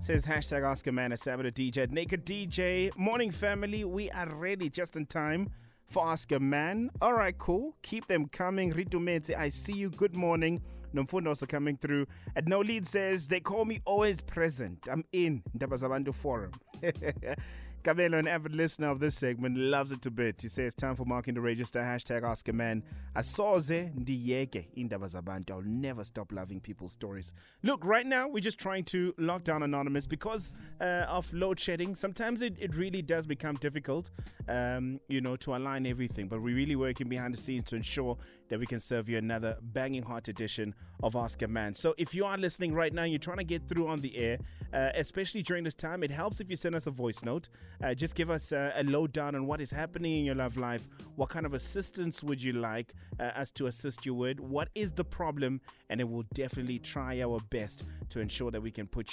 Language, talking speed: English, 210 wpm